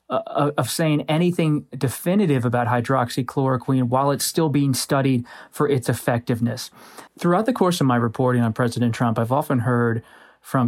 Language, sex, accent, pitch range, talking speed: English, male, American, 125-150 Hz, 150 wpm